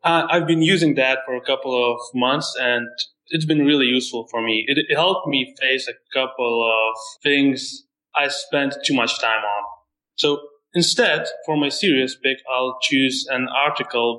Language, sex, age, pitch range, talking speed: English, male, 20-39, 120-145 Hz, 175 wpm